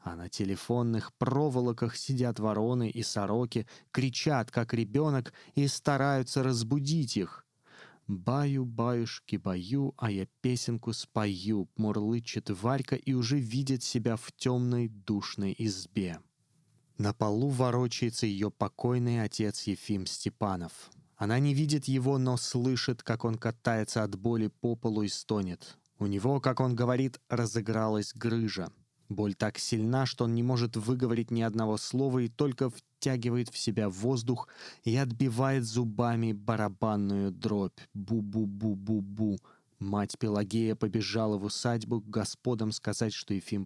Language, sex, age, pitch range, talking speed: Russian, male, 20-39, 105-130 Hz, 130 wpm